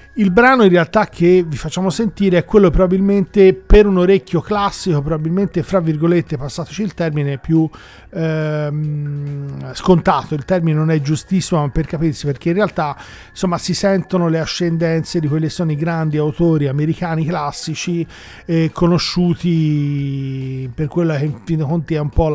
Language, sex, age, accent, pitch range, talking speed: Italian, male, 40-59, native, 150-175 Hz, 160 wpm